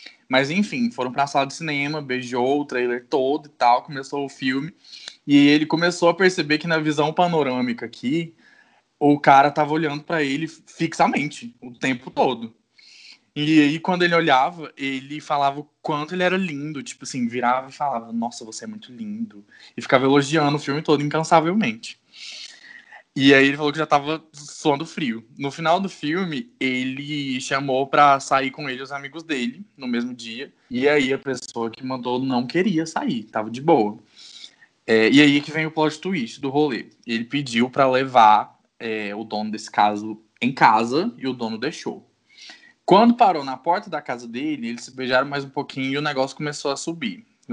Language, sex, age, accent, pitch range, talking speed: Portuguese, male, 20-39, Brazilian, 130-165 Hz, 185 wpm